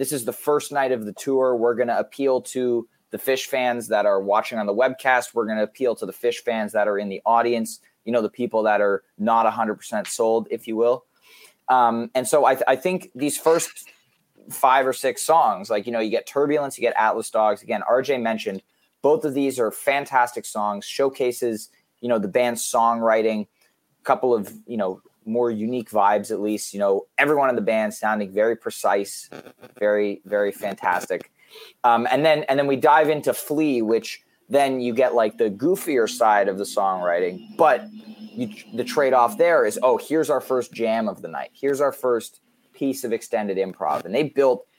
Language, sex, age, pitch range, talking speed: English, male, 20-39, 110-145 Hz, 200 wpm